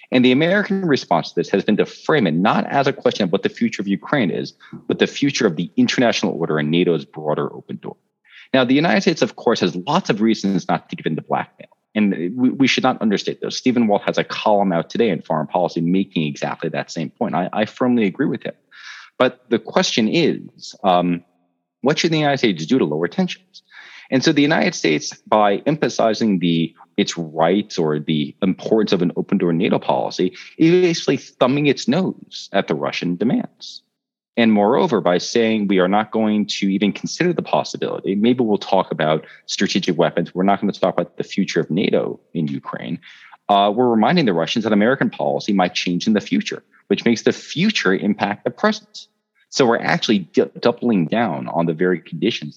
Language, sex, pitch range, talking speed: English, male, 85-140 Hz, 205 wpm